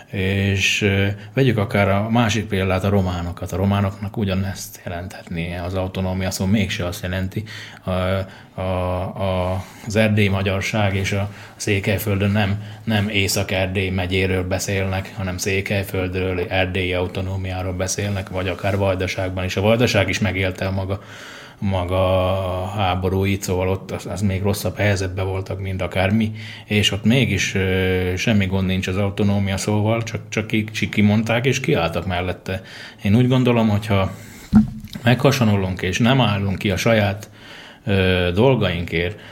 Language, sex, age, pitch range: Slovak, male, 20-39, 95-110 Hz